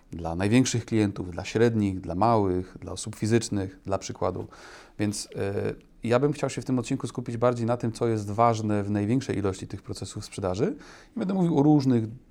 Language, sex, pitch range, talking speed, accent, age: Polish, male, 100-120 Hz, 190 wpm, native, 30-49